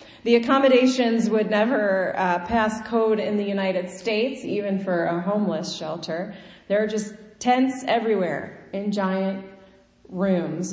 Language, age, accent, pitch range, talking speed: English, 30-49, American, 175-215 Hz, 135 wpm